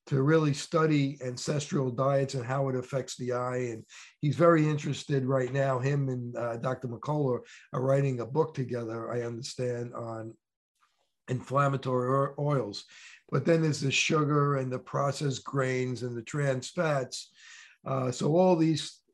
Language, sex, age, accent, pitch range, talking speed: English, male, 50-69, American, 125-145 Hz, 155 wpm